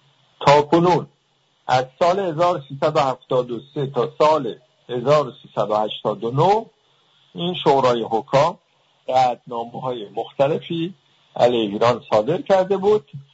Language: English